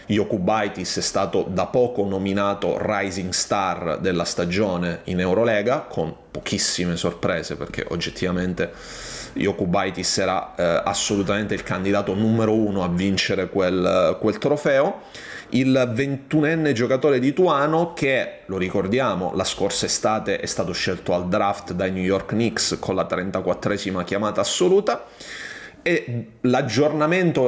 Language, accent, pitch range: Italian, native, 95-130 Hz